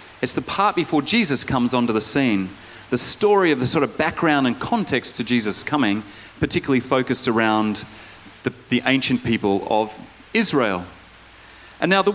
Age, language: 40-59, English